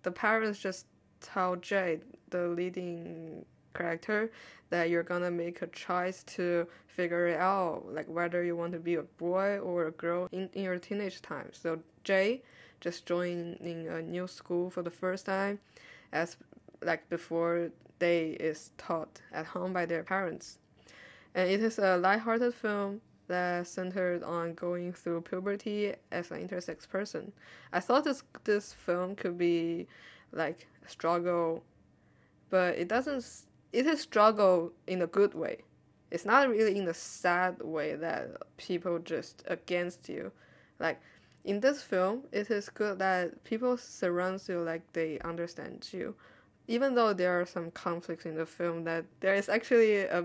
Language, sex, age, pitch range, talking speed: English, female, 20-39, 170-200 Hz, 160 wpm